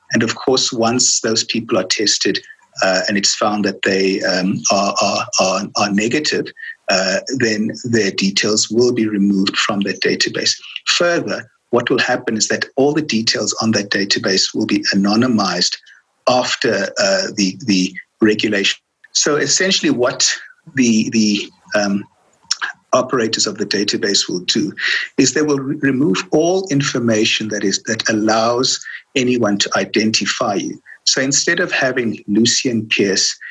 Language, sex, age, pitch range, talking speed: English, male, 50-69, 105-135 Hz, 150 wpm